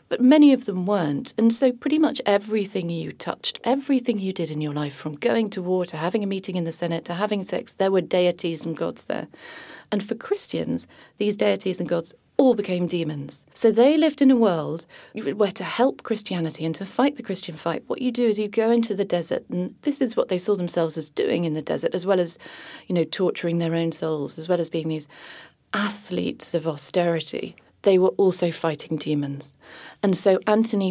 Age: 40-59